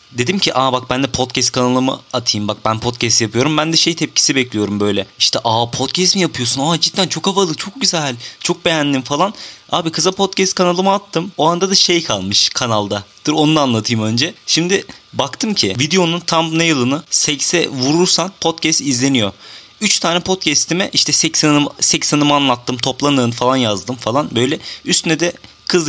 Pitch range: 120-165 Hz